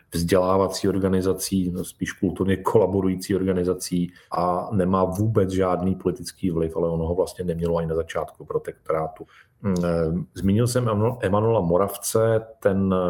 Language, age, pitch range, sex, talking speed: Slovak, 40-59, 85-95 Hz, male, 115 wpm